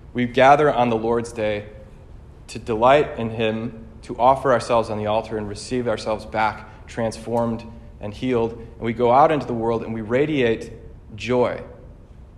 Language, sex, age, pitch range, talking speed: English, male, 30-49, 110-135 Hz, 165 wpm